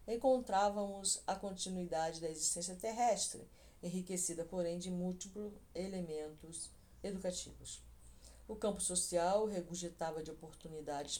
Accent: Brazilian